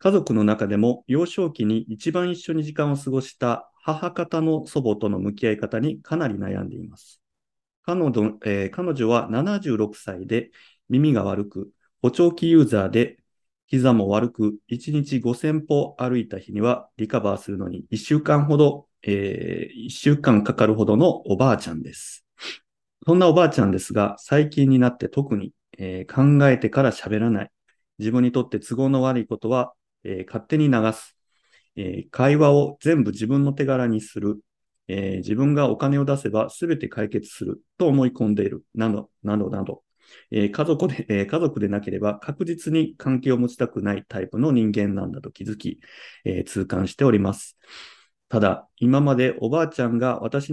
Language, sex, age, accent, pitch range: Japanese, male, 30-49, native, 105-140 Hz